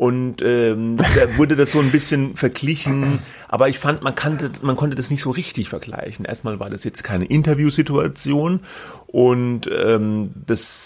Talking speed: 165 wpm